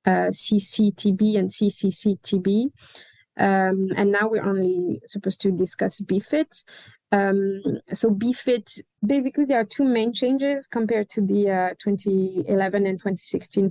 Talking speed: 120 wpm